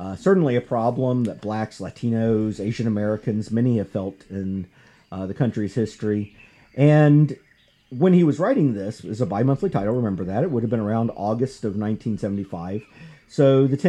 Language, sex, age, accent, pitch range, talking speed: English, male, 40-59, American, 110-155 Hz, 175 wpm